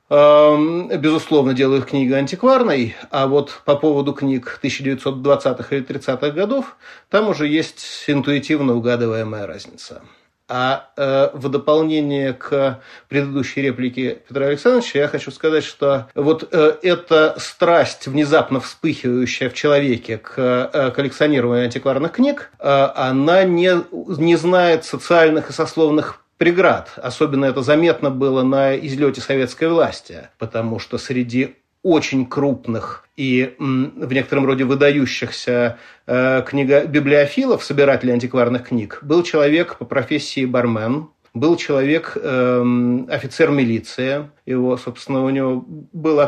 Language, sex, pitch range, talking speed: Russian, male, 125-150 Hz, 115 wpm